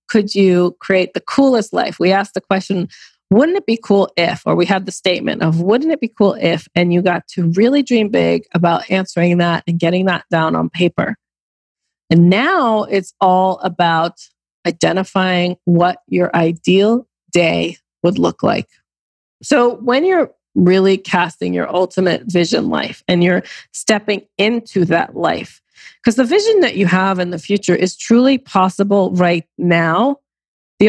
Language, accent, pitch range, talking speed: English, American, 175-220 Hz, 165 wpm